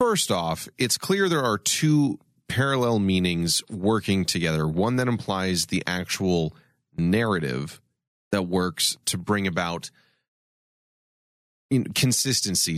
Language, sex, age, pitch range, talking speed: English, male, 30-49, 90-125 Hz, 110 wpm